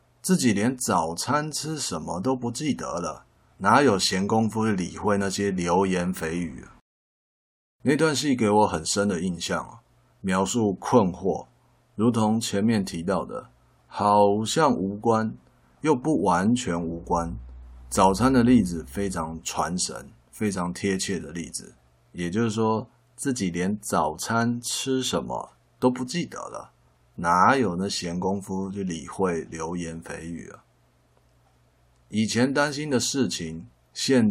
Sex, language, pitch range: male, Chinese, 85-115 Hz